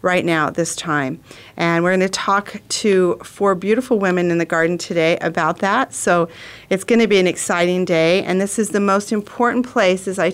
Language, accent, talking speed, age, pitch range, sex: English, American, 215 wpm, 40-59, 165-200 Hz, female